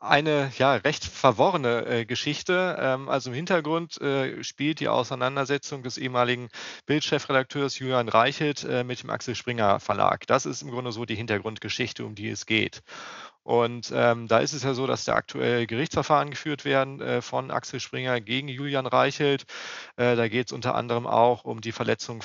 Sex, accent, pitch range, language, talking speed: male, German, 110-135 Hz, German, 180 wpm